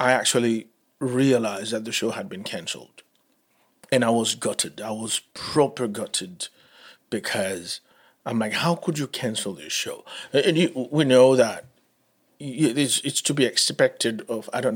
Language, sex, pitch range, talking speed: English, male, 120-160 Hz, 160 wpm